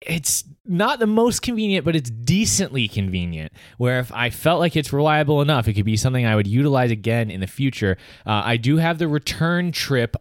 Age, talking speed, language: 20-39, 205 wpm, English